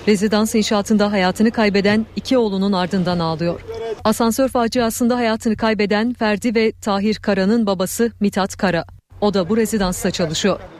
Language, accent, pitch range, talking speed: Turkish, native, 190-225 Hz, 135 wpm